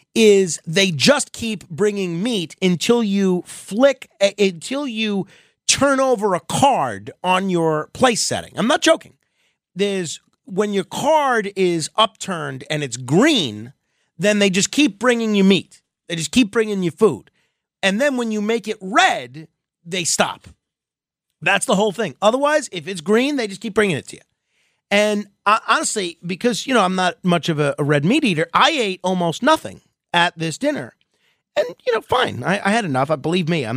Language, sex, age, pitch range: English, male, 30-49, 170-245 Hz